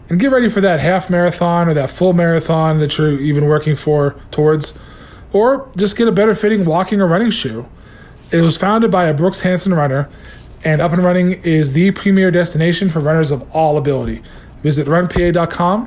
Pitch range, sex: 145-180 Hz, male